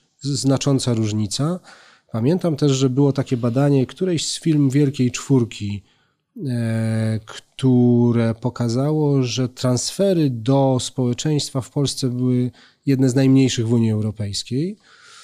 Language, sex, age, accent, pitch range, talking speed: Polish, male, 30-49, native, 120-145 Hz, 110 wpm